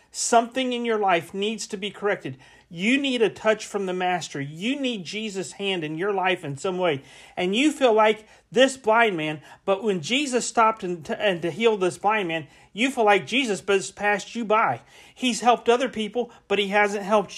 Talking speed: 205 wpm